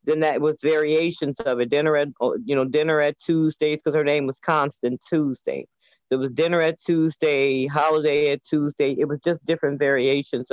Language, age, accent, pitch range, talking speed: English, 40-59, American, 130-155 Hz, 190 wpm